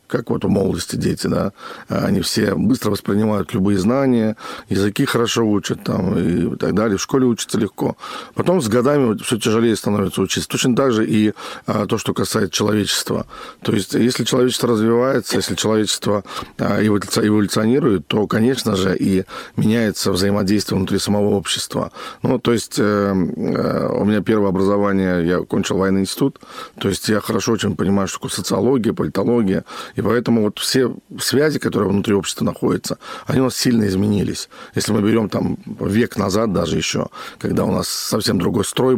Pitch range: 100-115 Hz